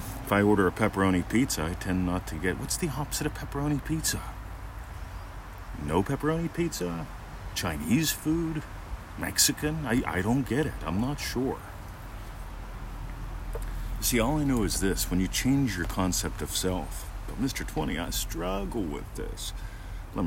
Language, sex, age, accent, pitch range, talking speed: English, male, 40-59, American, 90-125 Hz, 155 wpm